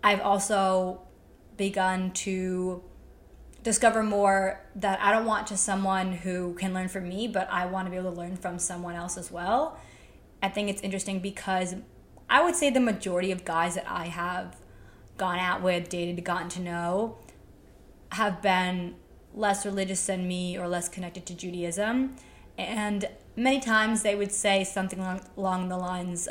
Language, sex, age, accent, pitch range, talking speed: English, female, 20-39, American, 185-215 Hz, 165 wpm